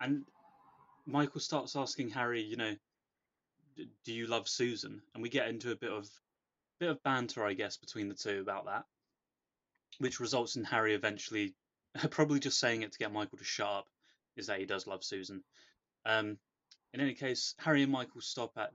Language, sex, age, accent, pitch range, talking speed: English, male, 20-39, British, 105-135 Hz, 190 wpm